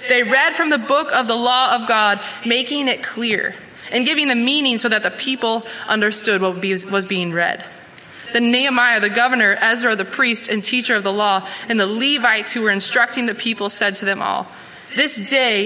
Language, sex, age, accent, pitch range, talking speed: English, female, 20-39, American, 205-250 Hz, 200 wpm